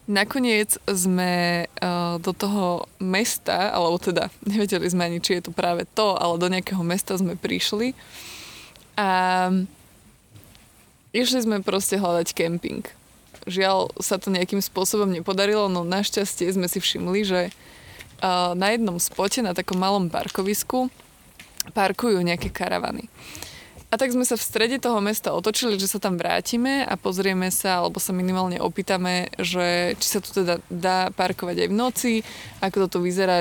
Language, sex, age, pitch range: Slovak, female, 20-39, 180-205 Hz